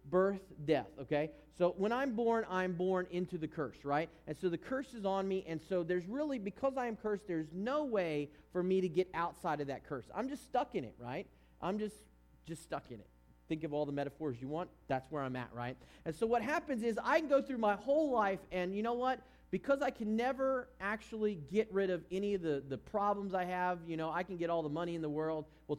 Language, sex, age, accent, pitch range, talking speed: English, male, 40-59, American, 155-215 Hz, 245 wpm